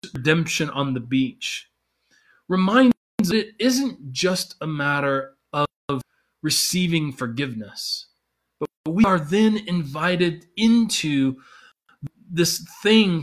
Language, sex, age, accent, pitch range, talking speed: English, male, 20-39, American, 135-185 Hz, 95 wpm